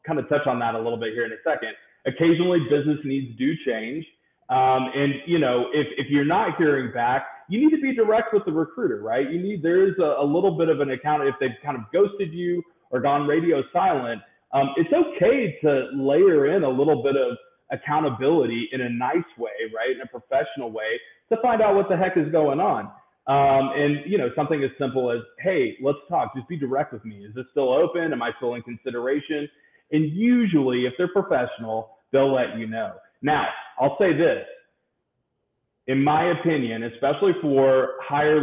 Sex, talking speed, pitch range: male, 205 wpm, 120-165 Hz